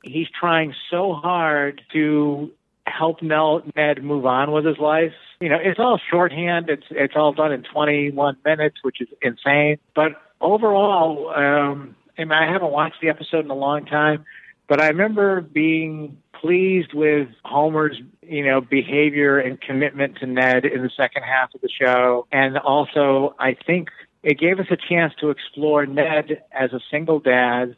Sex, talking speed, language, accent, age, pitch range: male, 170 wpm, English, American, 50-69, 135-155 Hz